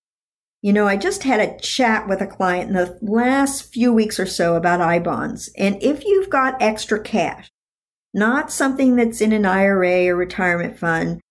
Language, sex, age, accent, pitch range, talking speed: English, male, 50-69, American, 175-220 Hz, 180 wpm